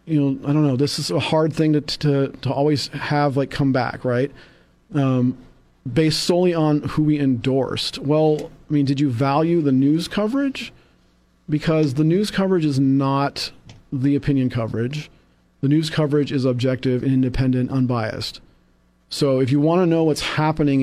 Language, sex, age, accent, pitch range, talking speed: English, male, 40-59, American, 125-150 Hz, 175 wpm